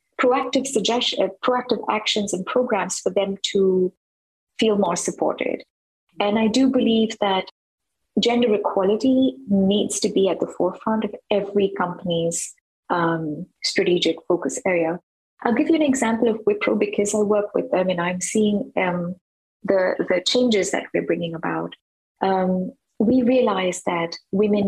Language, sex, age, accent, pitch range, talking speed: English, female, 30-49, Indian, 180-225 Hz, 145 wpm